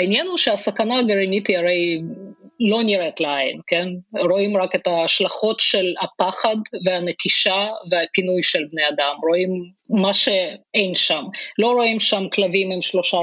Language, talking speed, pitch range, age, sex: Hebrew, 140 wpm, 175-205 Hz, 20-39, female